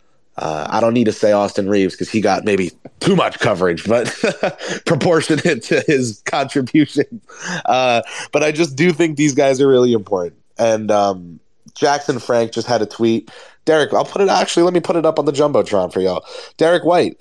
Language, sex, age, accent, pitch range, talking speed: English, male, 20-39, American, 115-160 Hz, 190 wpm